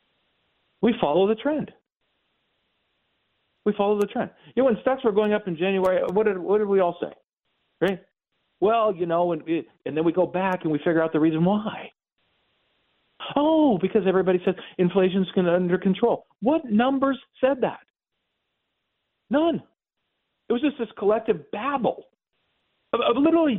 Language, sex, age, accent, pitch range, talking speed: English, male, 50-69, American, 170-240 Hz, 165 wpm